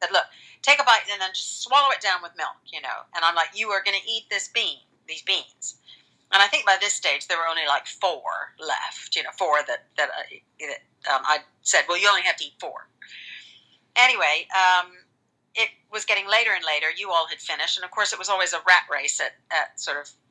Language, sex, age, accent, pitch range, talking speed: English, female, 50-69, American, 155-210 Hz, 240 wpm